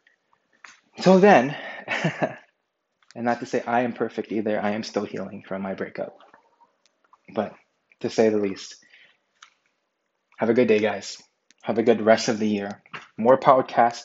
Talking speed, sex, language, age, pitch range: 155 wpm, male, English, 20-39, 110-130 Hz